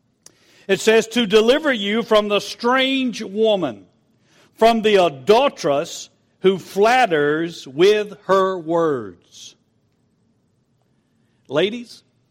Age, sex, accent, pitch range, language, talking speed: 60-79, male, American, 135-220 Hz, English, 90 wpm